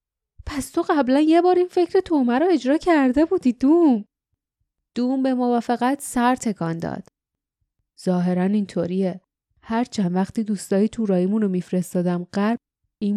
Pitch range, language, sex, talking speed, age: 190-245 Hz, Persian, female, 140 wpm, 10-29